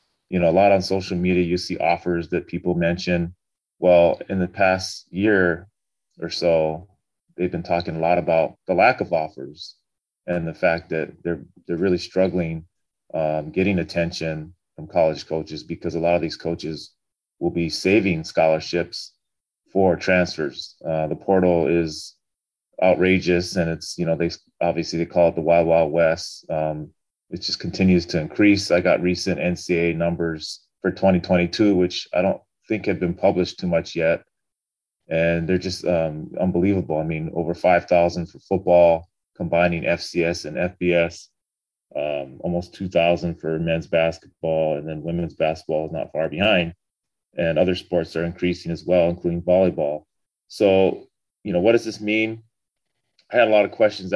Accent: American